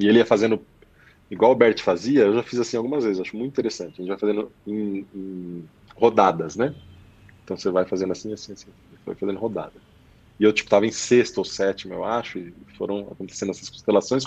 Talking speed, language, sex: 215 wpm, English, male